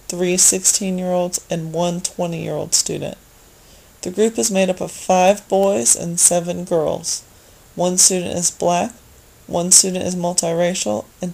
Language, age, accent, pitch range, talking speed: English, 30-49, American, 175-195 Hz, 140 wpm